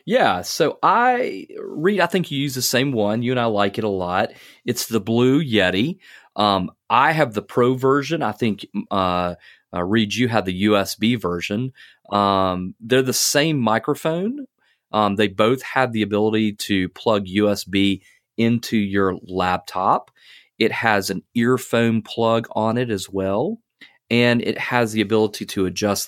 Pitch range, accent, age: 100-130 Hz, American, 30-49